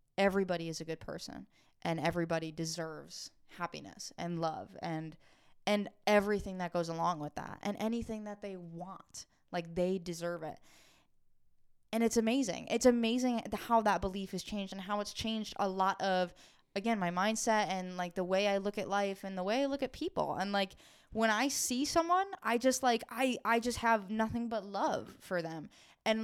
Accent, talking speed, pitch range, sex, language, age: American, 190 wpm, 180-225 Hz, female, English, 10-29